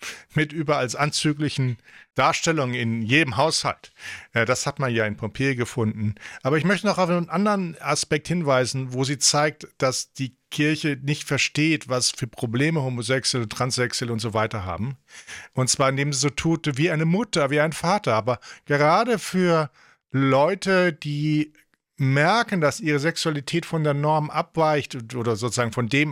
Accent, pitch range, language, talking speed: German, 130-165 Hz, English, 160 wpm